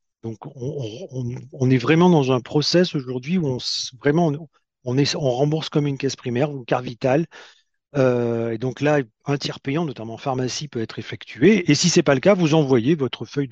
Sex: male